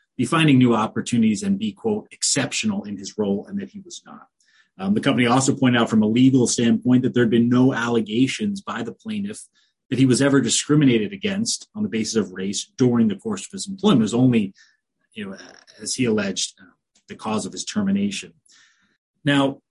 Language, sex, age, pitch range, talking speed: English, male, 30-49, 125-205 Hz, 205 wpm